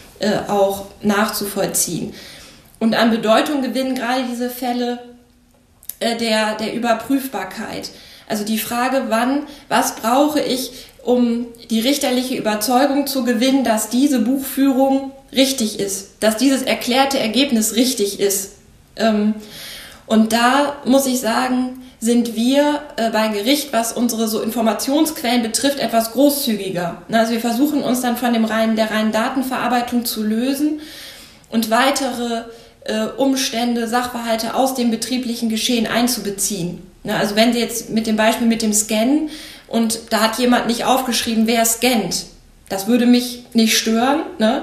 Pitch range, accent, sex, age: 220-255 Hz, German, female, 20-39